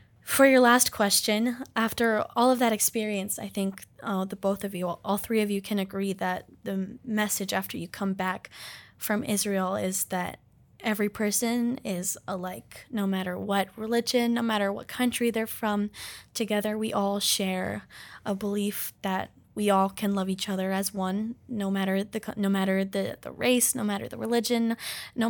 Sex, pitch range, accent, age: female, 195-220 Hz, American, 10-29